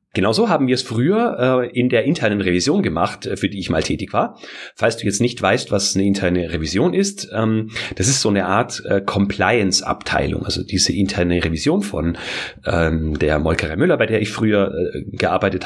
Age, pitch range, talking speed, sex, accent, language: 30-49, 90-115 Hz, 175 wpm, male, German, German